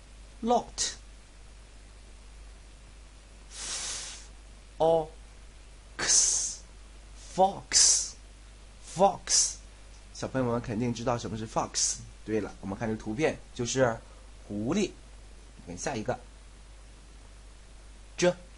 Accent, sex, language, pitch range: native, male, Chinese, 105-165 Hz